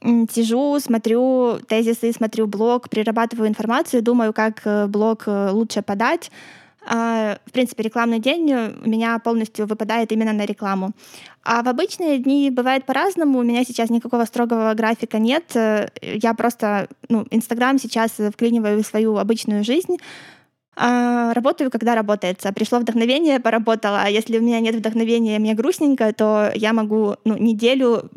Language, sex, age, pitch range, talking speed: Russian, female, 20-39, 215-240 Hz, 135 wpm